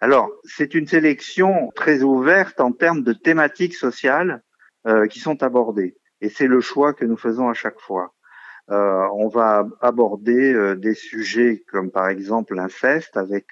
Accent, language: French, French